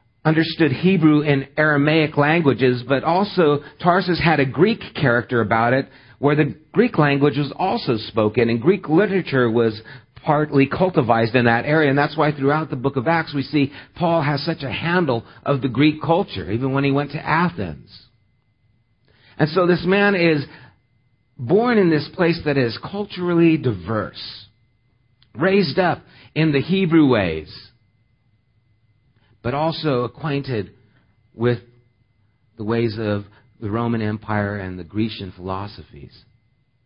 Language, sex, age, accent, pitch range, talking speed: English, male, 50-69, American, 120-160 Hz, 145 wpm